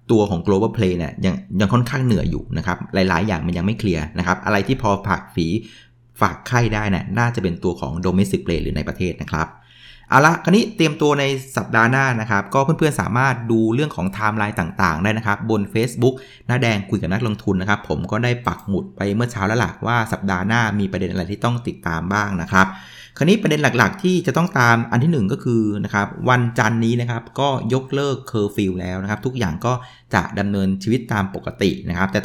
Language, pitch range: Thai, 95-125 Hz